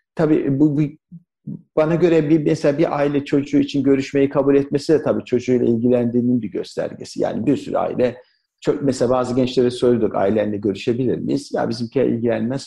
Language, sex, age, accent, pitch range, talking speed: Turkish, male, 50-69, native, 125-160 Hz, 165 wpm